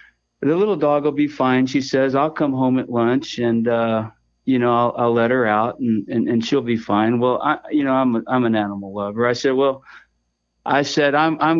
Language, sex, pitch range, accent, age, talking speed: English, male, 105-130 Hz, American, 50-69, 215 wpm